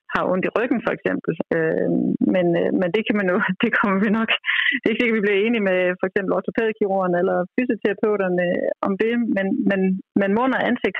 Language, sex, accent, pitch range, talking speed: Danish, female, native, 175-220 Hz, 185 wpm